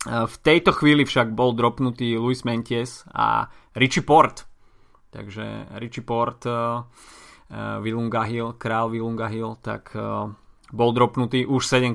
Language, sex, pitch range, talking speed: Slovak, male, 110-130 Hz, 130 wpm